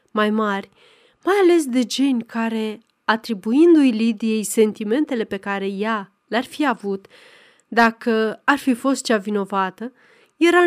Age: 30-49